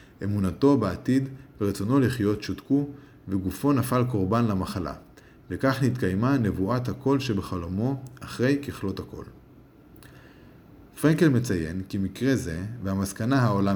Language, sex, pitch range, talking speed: Hebrew, male, 95-130 Hz, 105 wpm